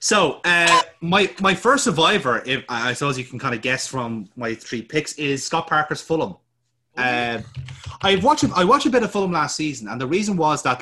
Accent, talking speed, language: Irish, 210 wpm, English